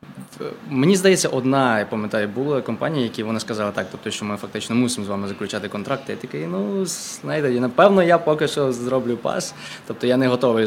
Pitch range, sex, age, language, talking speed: 110-140 Hz, male, 20-39, English, 190 wpm